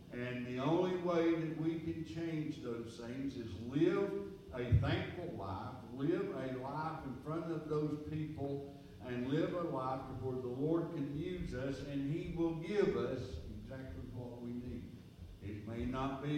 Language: English